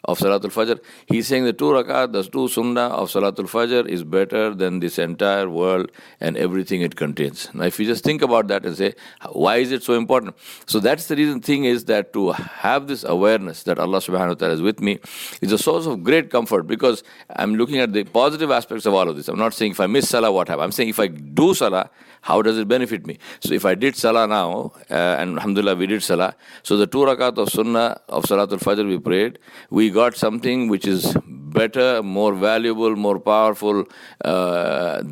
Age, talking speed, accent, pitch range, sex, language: 60-79, 220 wpm, Indian, 95-115 Hz, male, English